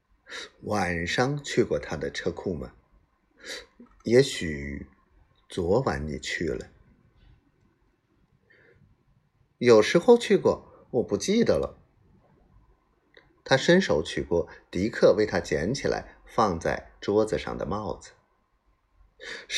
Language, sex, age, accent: Chinese, male, 50-69, native